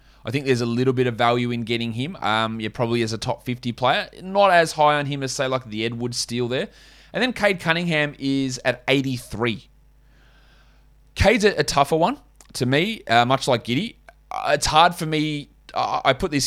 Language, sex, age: English, male, 20-39